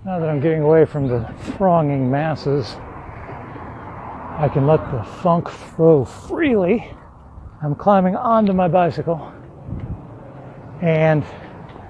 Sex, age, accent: male, 60-79, American